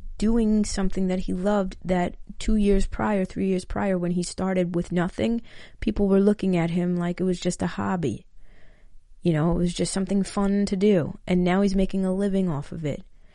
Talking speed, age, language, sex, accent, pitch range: 205 wpm, 30-49, English, female, American, 170-200 Hz